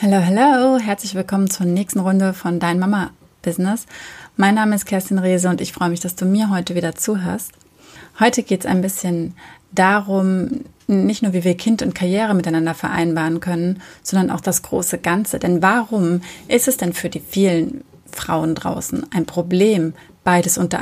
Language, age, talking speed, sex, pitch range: German, 30-49, 170 wpm, female, 180-215 Hz